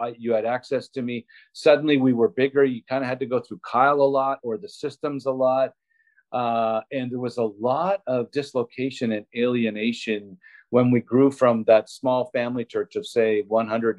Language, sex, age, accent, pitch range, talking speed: English, male, 50-69, American, 115-150 Hz, 195 wpm